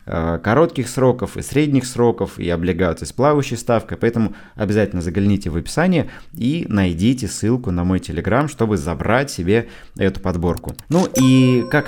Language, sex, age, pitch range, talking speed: Russian, male, 20-39, 95-125 Hz, 145 wpm